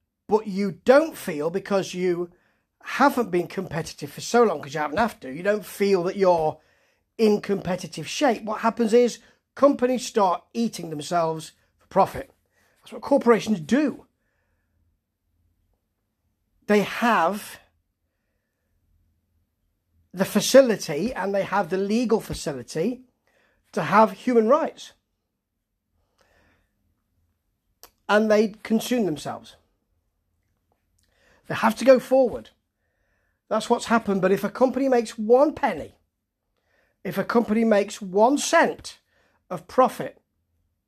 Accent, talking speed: British, 115 wpm